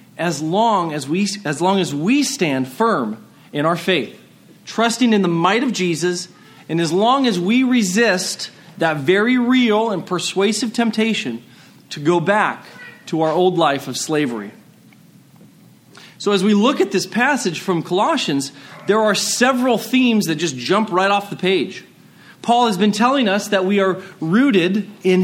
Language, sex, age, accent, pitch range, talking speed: English, male, 40-59, American, 175-235 Hz, 165 wpm